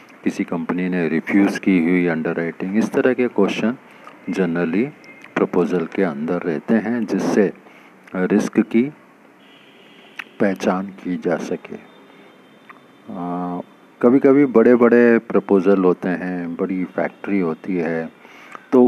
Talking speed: 115 wpm